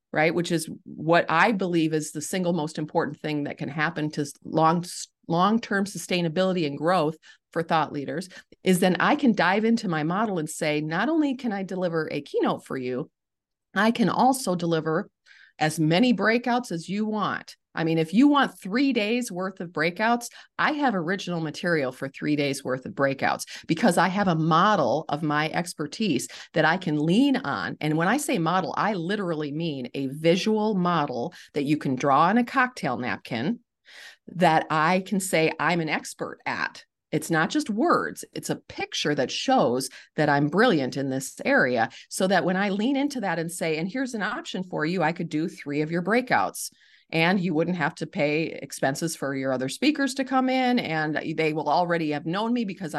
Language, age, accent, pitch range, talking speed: English, 40-59, American, 155-215 Hz, 195 wpm